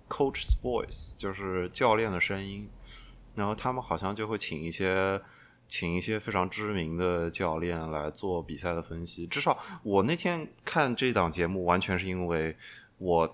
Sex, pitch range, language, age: male, 80-95 Hz, Chinese, 20-39